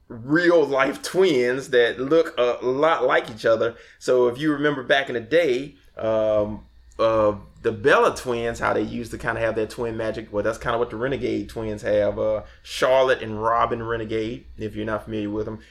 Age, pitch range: 20-39, 105-120 Hz